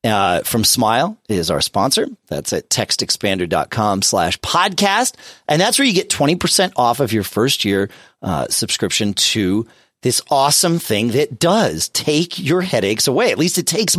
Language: English